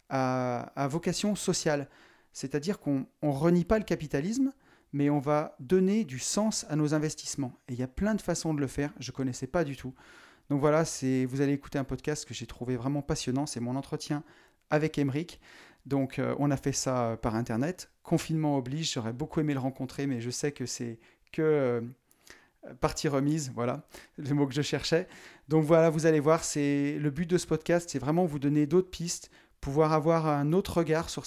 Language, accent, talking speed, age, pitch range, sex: French, French, 205 wpm, 30-49, 135-160 Hz, male